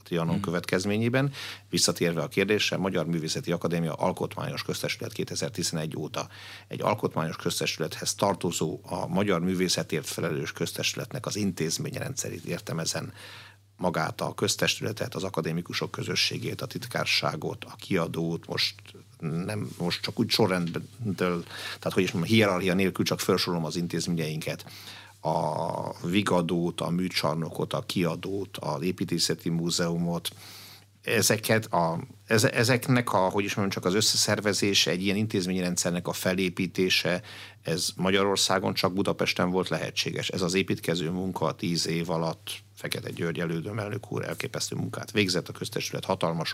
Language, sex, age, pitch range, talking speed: Hungarian, male, 50-69, 85-100 Hz, 125 wpm